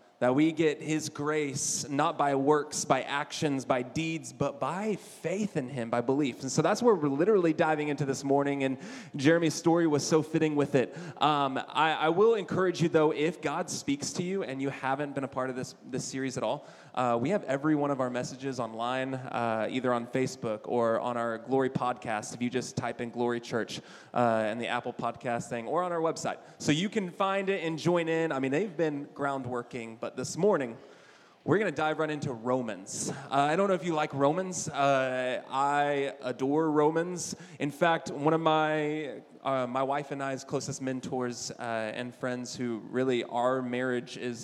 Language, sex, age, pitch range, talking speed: English, male, 20-39, 125-155 Hz, 205 wpm